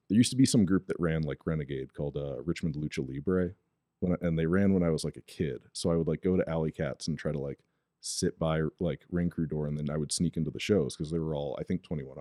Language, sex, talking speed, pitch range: English, male, 290 wpm, 75-95 Hz